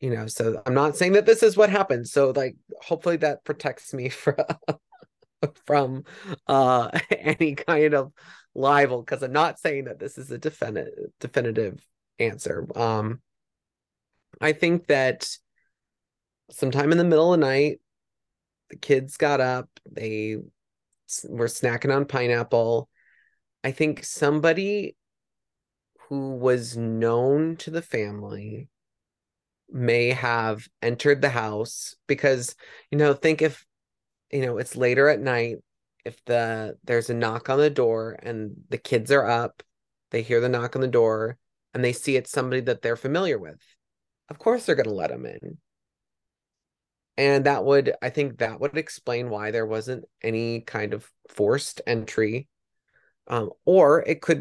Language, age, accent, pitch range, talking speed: English, 30-49, American, 115-150 Hz, 150 wpm